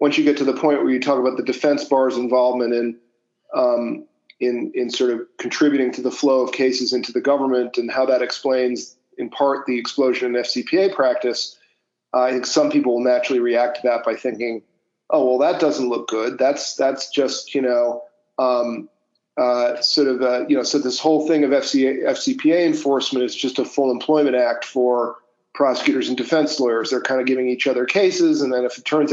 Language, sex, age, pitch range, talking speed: English, male, 40-59, 125-170 Hz, 210 wpm